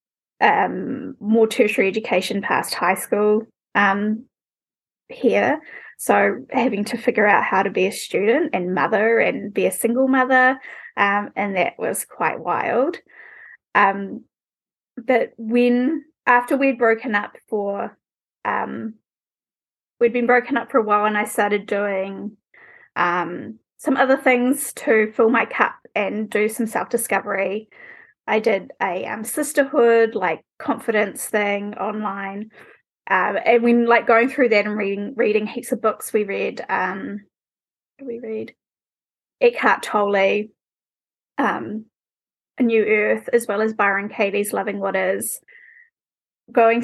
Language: English